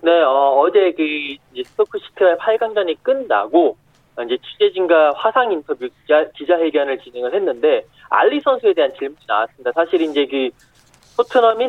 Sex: male